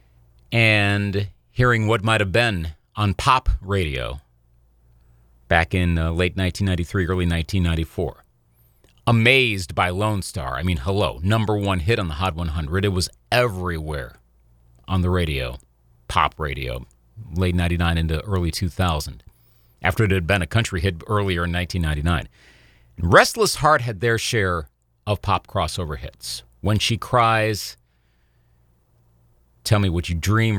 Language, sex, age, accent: English, male, 40-59, American